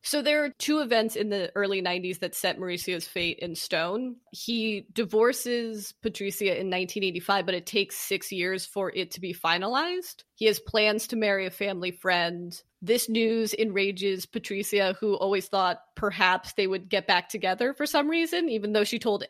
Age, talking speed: 20-39, 180 wpm